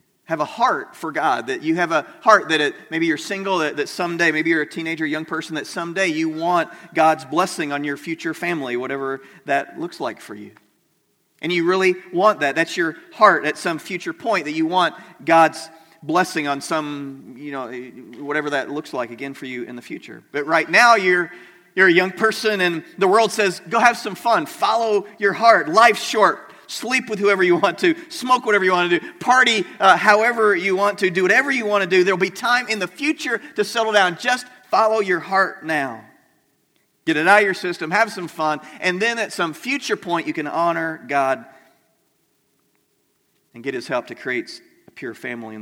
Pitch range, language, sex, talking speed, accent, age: 155-215 Hz, English, male, 210 wpm, American, 40-59